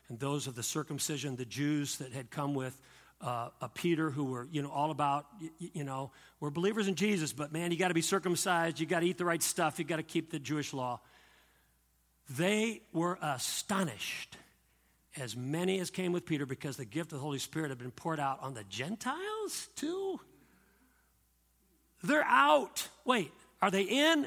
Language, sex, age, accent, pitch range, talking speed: English, male, 50-69, American, 130-190 Hz, 195 wpm